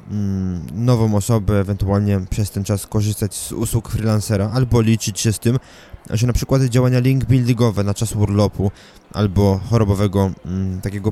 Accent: native